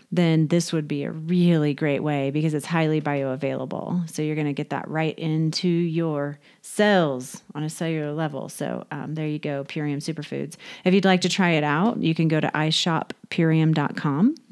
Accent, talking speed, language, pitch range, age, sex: American, 185 wpm, English, 155-185 Hz, 30-49, female